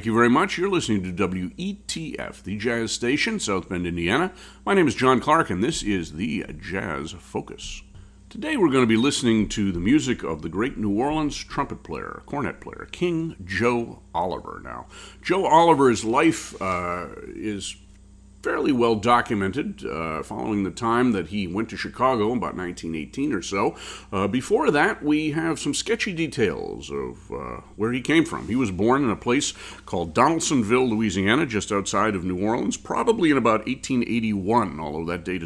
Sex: male